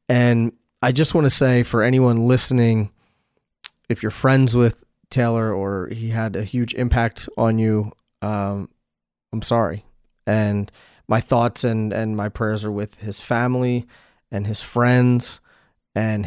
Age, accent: 30-49, American